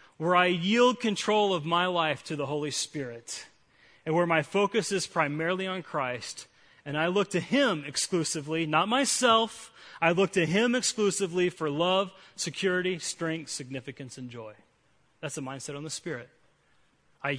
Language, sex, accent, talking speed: English, male, American, 160 wpm